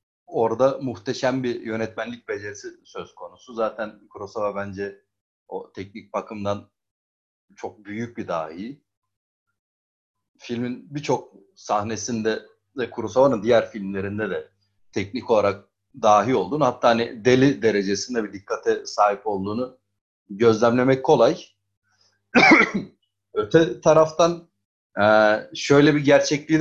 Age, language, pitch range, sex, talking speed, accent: 30-49, Turkish, 100-145 Hz, male, 100 wpm, native